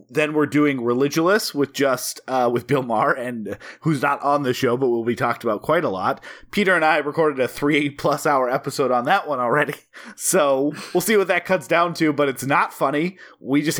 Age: 30-49